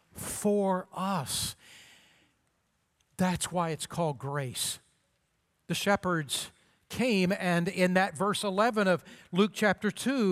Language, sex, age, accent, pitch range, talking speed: English, male, 50-69, American, 165-215 Hz, 110 wpm